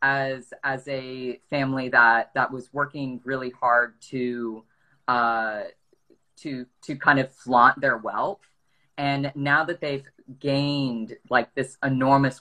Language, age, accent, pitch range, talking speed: English, 20-39, American, 120-140 Hz, 130 wpm